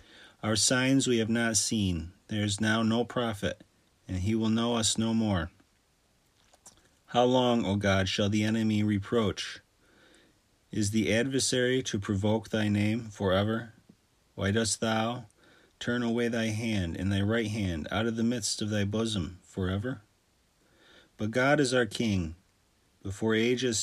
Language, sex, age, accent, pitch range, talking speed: English, male, 40-59, American, 100-115 Hz, 150 wpm